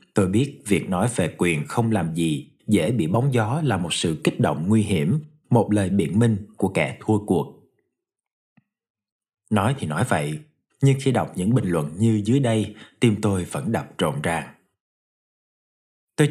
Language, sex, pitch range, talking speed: Vietnamese, male, 100-120 Hz, 175 wpm